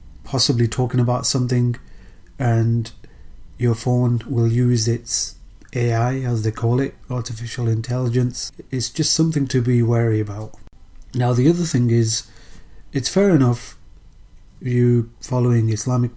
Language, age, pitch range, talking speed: English, 30-49, 115-125 Hz, 130 wpm